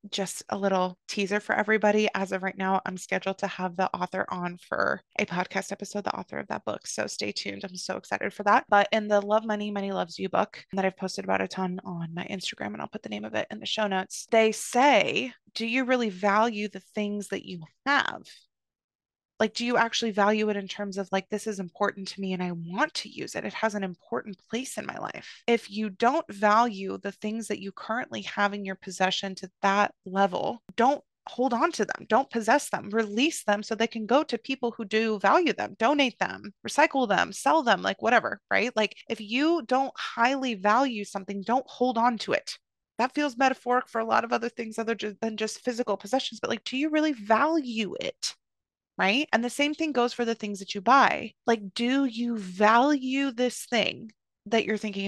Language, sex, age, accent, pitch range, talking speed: English, female, 20-39, American, 200-240 Hz, 220 wpm